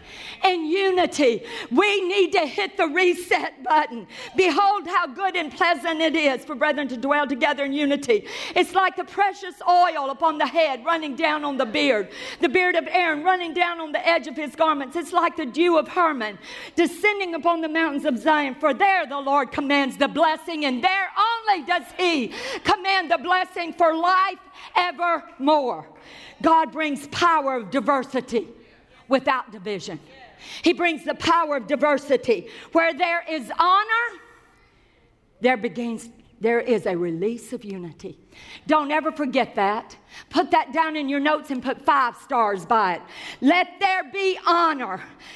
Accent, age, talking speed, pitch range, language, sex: American, 50-69, 165 wpm, 280-360 Hz, English, female